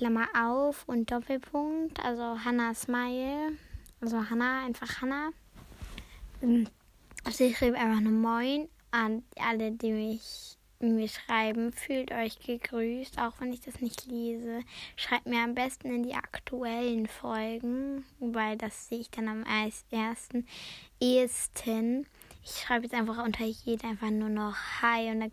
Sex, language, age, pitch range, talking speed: female, German, 10-29, 225-250 Hz, 135 wpm